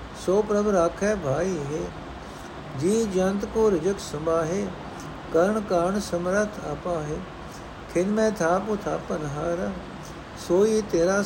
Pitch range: 165-200 Hz